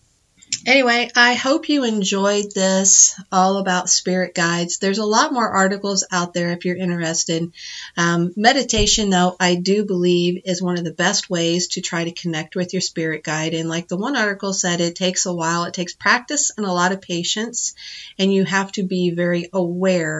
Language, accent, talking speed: English, American, 195 wpm